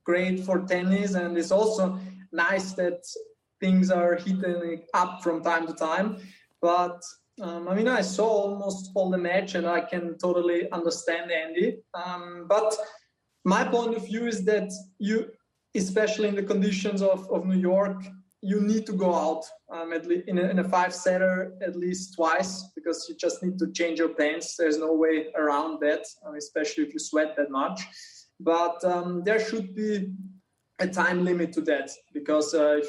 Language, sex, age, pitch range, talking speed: English, male, 20-39, 165-195 Hz, 175 wpm